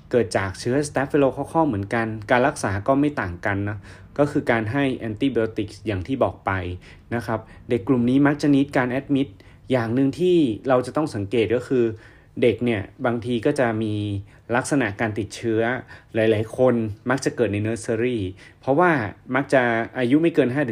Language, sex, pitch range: Thai, male, 105-130 Hz